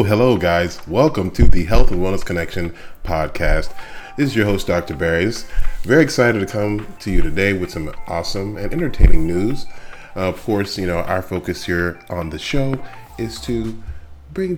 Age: 30-49